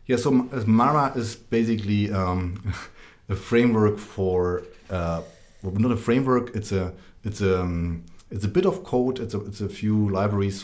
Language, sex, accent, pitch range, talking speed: English, male, German, 95-110 Hz, 165 wpm